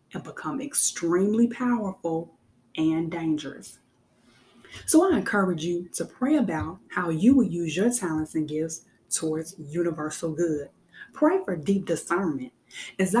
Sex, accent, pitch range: female, American, 165-240 Hz